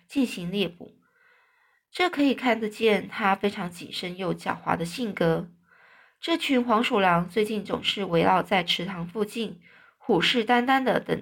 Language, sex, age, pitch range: Chinese, female, 20-39, 180-245 Hz